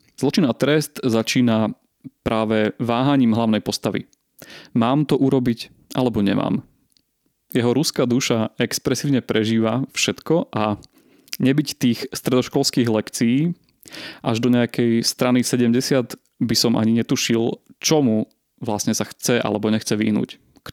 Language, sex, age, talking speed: Slovak, male, 30-49, 120 wpm